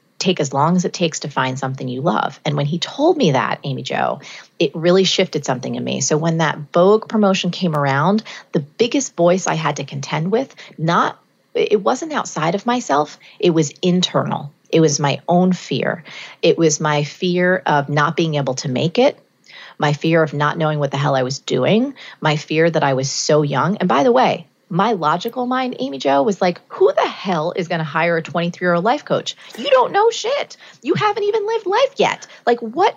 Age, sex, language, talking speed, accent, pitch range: 30-49, female, English, 215 wpm, American, 145-195 Hz